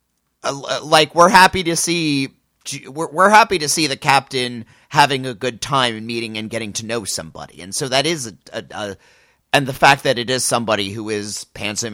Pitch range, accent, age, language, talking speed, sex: 105-145 Hz, American, 30-49, English, 205 wpm, male